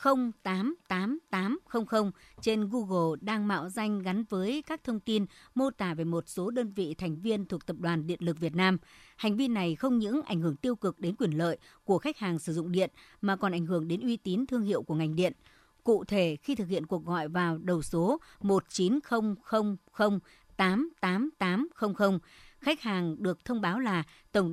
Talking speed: 185 wpm